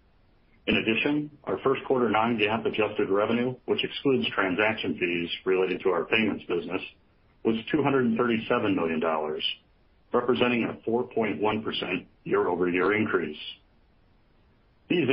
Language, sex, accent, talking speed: English, male, American, 105 wpm